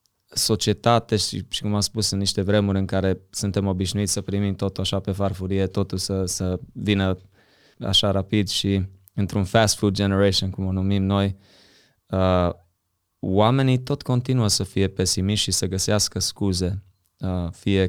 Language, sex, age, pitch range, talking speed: Romanian, male, 20-39, 95-105 Hz, 160 wpm